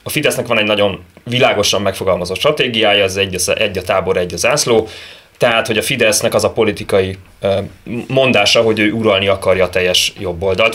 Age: 30-49